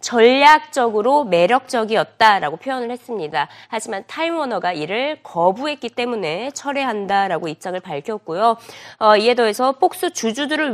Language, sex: Korean, female